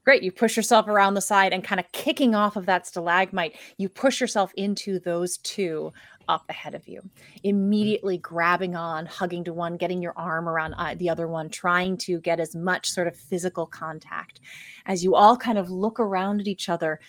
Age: 30-49